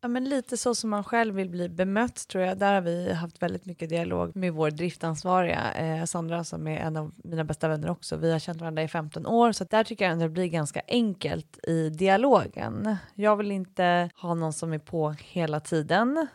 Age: 30-49